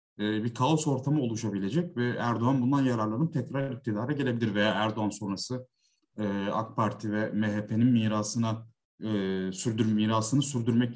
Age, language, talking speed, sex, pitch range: 30-49, Turkish, 120 wpm, male, 110-140 Hz